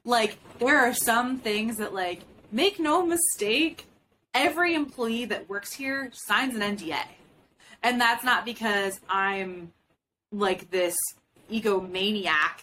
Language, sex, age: English, female, 20-39